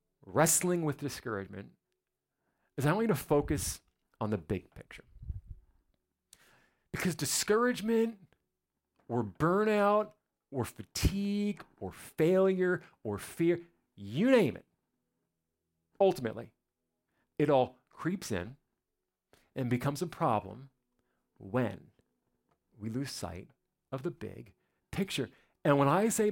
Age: 40-59